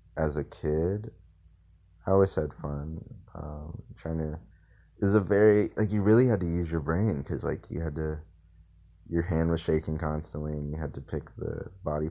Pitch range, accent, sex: 75-85 Hz, American, male